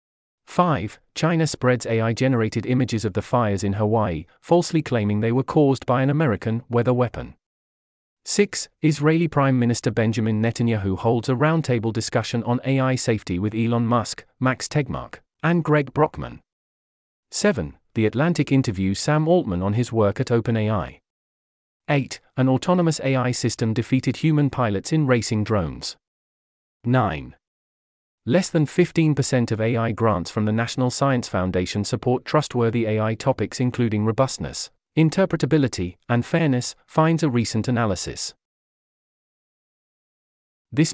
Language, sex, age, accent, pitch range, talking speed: English, male, 40-59, British, 105-135 Hz, 130 wpm